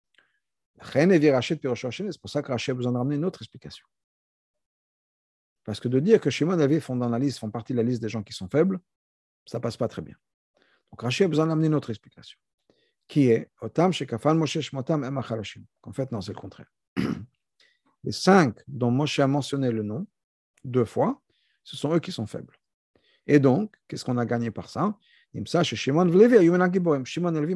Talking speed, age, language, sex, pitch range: 190 wpm, 50-69, French, male, 120-175 Hz